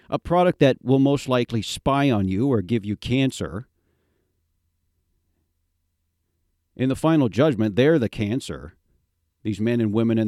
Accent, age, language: American, 50-69, English